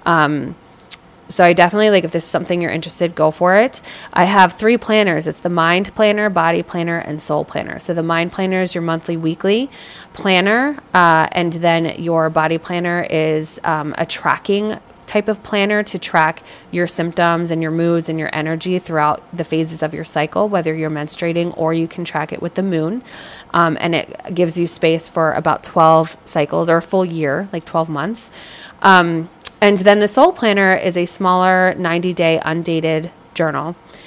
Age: 20-39